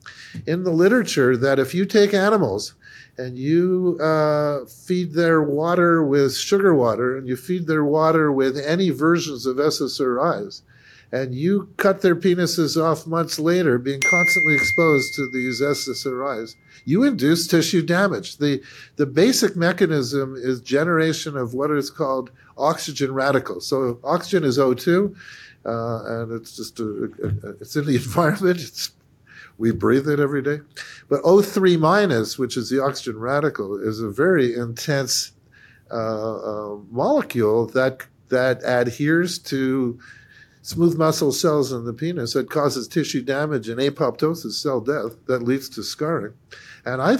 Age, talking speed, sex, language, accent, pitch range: 50-69, 150 wpm, male, English, American, 125-160 Hz